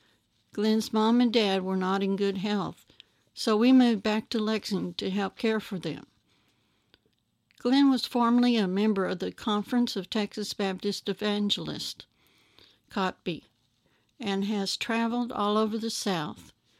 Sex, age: female, 60-79